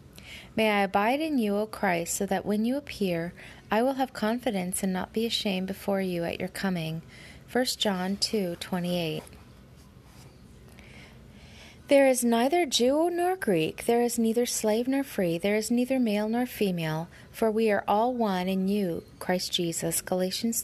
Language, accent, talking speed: English, American, 170 wpm